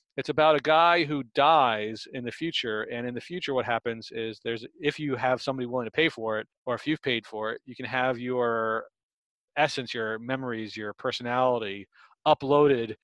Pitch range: 115-135 Hz